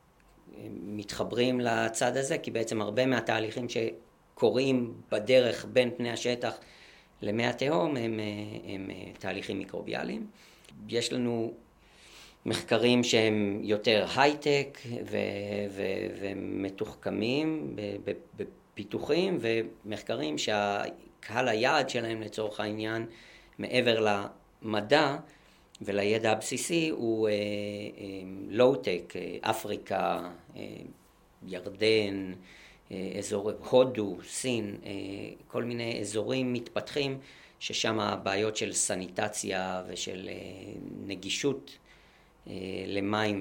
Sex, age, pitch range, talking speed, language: male, 40-59, 100-120 Hz, 85 wpm, Hebrew